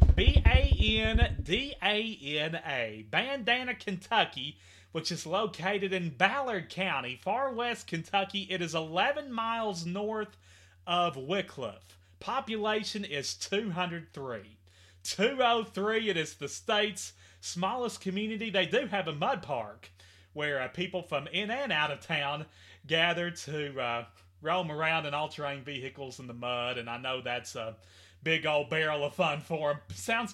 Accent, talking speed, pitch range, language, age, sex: American, 135 wpm, 125-210 Hz, English, 30-49, male